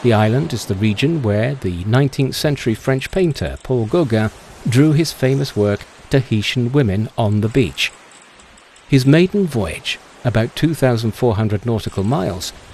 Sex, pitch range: male, 105-145 Hz